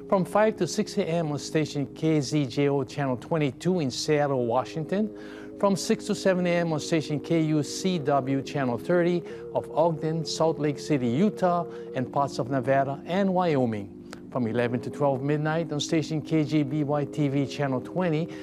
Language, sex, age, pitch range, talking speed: English, male, 60-79, 130-160 Hz, 150 wpm